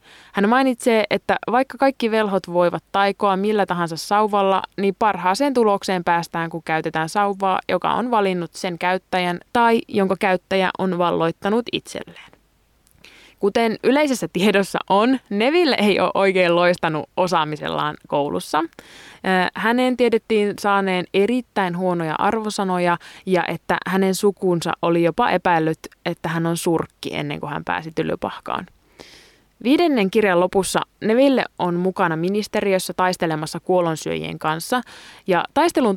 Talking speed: 125 wpm